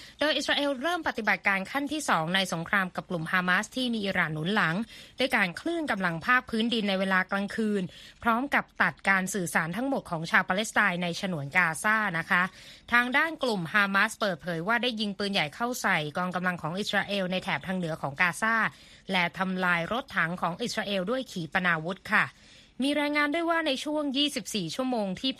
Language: Thai